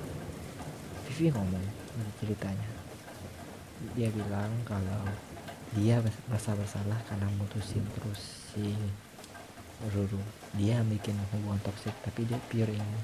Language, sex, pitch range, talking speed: Malay, male, 105-115 Hz, 100 wpm